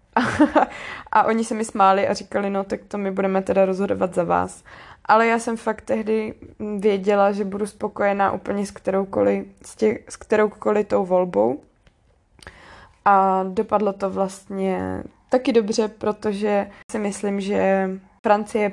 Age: 20-39